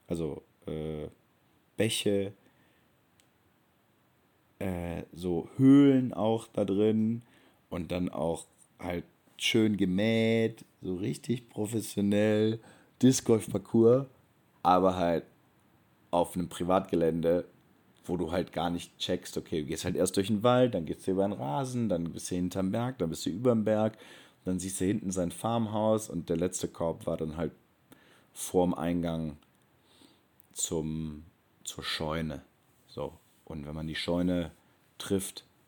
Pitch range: 85-105 Hz